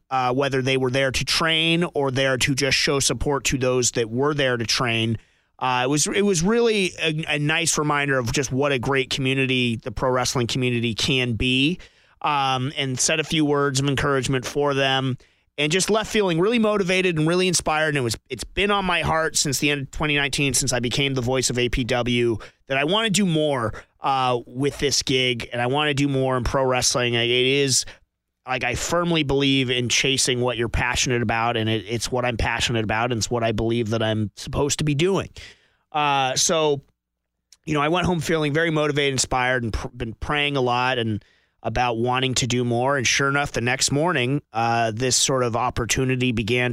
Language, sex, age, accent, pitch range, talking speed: English, male, 30-49, American, 120-145 Hz, 210 wpm